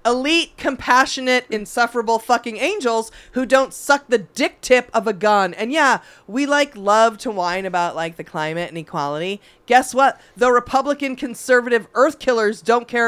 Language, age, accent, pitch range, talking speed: English, 30-49, American, 195-265 Hz, 165 wpm